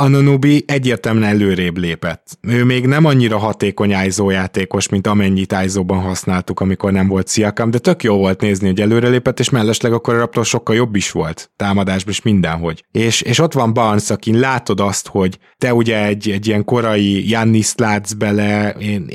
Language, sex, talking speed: Hungarian, male, 170 wpm